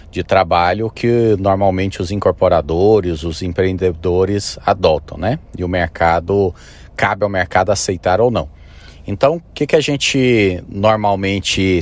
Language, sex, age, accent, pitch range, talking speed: Portuguese, male, 40-59, Brazilian, 85-105 Hz, 130 wpm